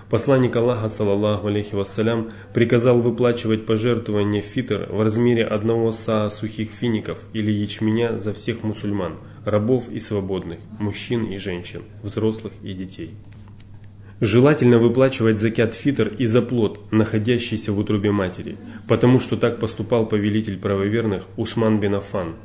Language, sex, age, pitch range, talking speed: Russian, male, 20-39, 100-115 Hz, 130 wpm